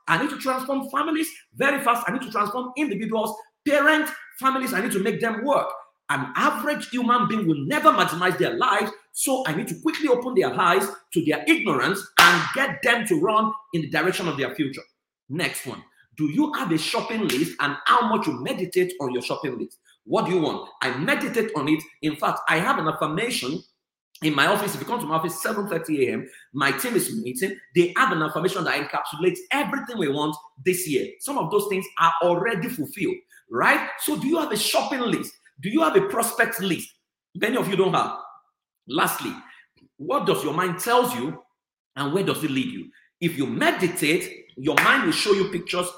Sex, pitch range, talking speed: male, 175-285 Hz, 200 wpm